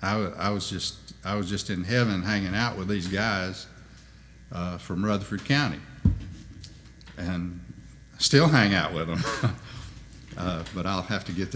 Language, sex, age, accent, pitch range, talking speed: English, male, 60-79, American, 95-115 Hz, 150 wpm